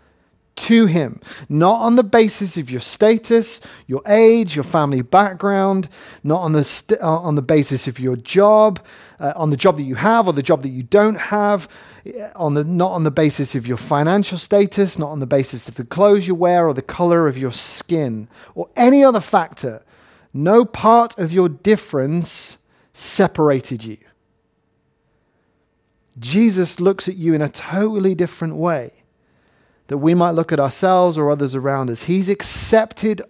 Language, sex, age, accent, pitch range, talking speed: English, male, 30-49, British, 135-195 Hz, 170 wpm